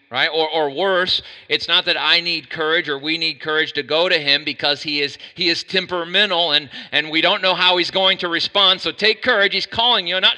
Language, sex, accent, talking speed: English, male, American, 245 wpm